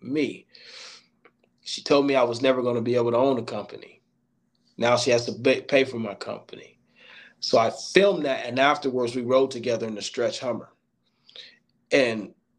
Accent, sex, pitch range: American, male, 115-135 Hz